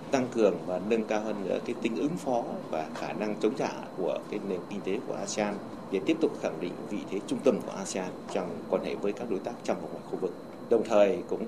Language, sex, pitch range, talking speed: Vietnamese, male, 105-150 Hz, 255 wpm